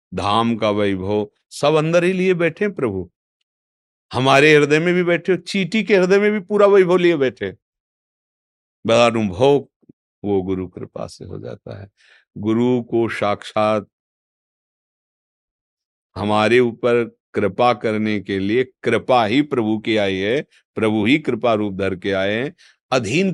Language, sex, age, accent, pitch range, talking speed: Hindi, male, 50-69, native, 105-135 Hz, 145 wpm